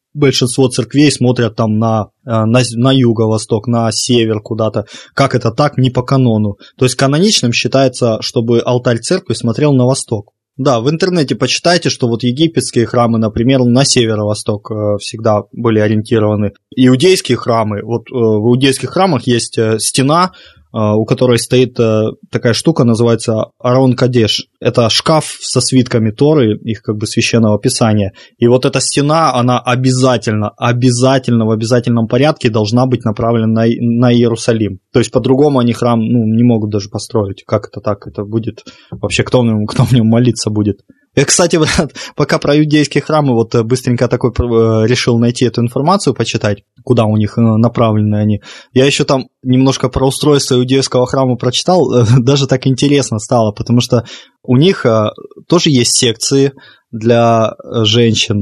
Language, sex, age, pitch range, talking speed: Russian, male, 20-39, 115-130 Hz, 150 wpm